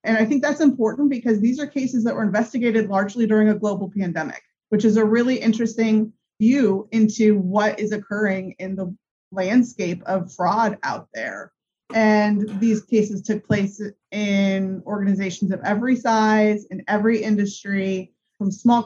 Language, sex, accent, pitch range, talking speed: English, female, American, 195-230 Hz, 155 wpm